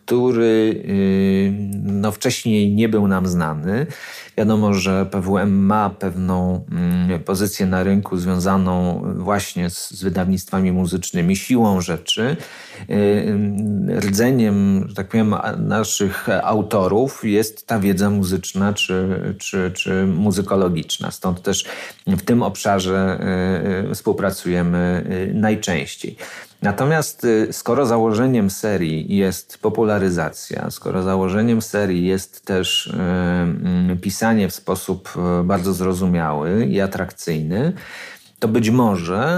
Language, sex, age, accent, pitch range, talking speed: Polish, male, 40-59, native, 95-110 Hz, 100 wpm